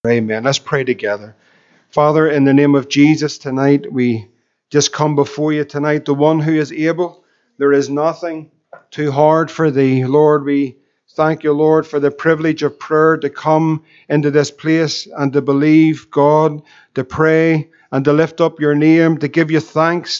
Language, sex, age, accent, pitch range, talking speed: English, male, 50-69, Irish, 150-165 Hz, 180 wpm